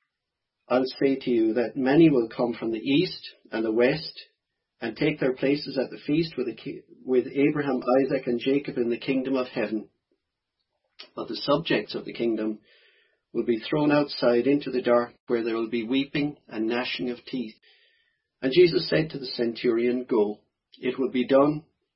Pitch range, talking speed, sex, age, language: 115-135 Hz, 180 wpm, male, 40-59, English